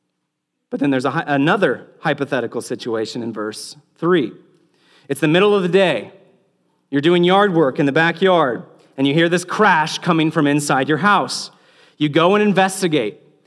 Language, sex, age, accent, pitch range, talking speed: English, male, 40-59, American, 145-185 Hz, 160 wpm